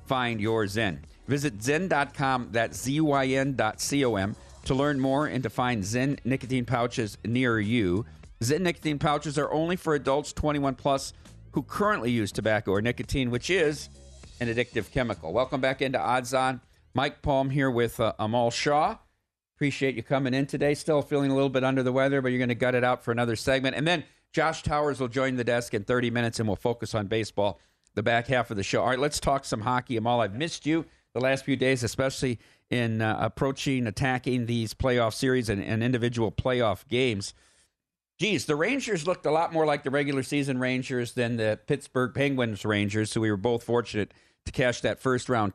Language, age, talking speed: English, 50-69, 205 wpm